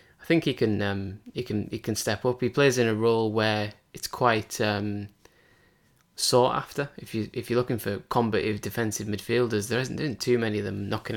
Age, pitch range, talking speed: 20-39, 105-120 Hz, 205 wpm